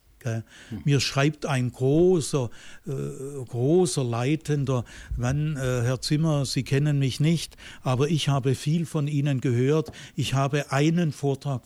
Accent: German